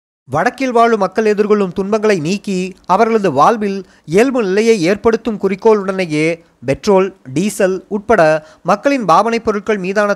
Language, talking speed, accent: Tamil, 110 wpm, native